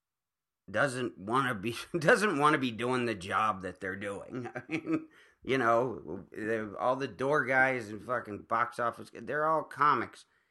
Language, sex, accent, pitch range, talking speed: English, male, American, 115-140 Hz, 165 wpm